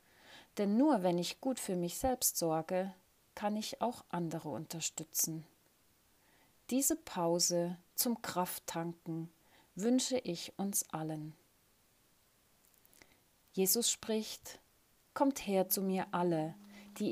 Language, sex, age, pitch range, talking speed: German, female, 30-49, 165-225 Hz, 105 wpm